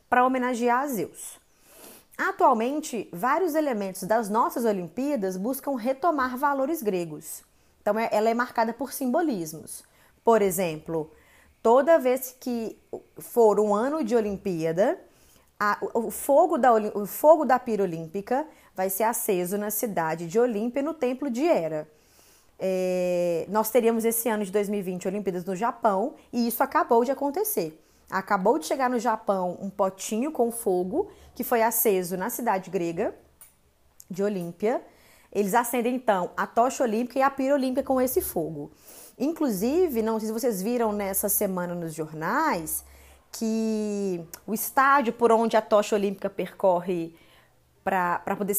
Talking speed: 140 wpm